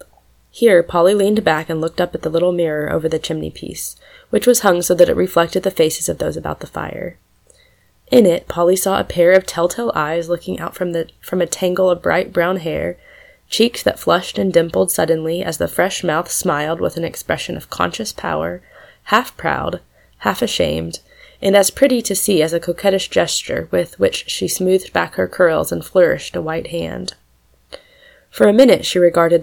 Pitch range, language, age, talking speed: 165-205 Hz, English, 20-39, 190 wpm